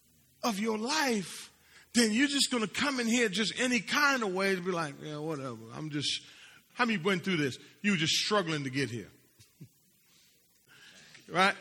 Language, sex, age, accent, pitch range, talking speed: English, male, 40-59, American, 180-245 Hz, 185 wpm